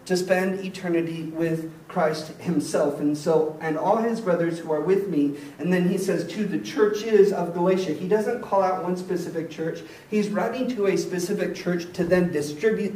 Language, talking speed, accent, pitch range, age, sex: English, 190 wpm, American, 170-220 Hz, 40-59, male